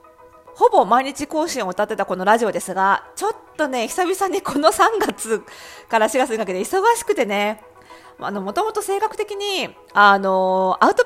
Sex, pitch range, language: female, 195-300 Hz, Japanese